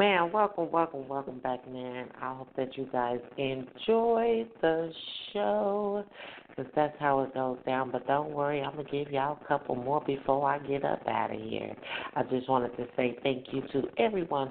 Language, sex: English, female